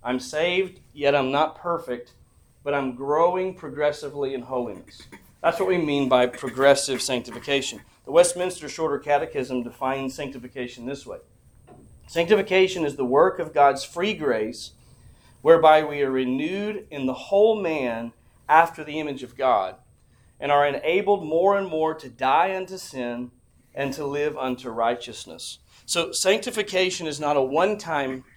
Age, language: 40-59, English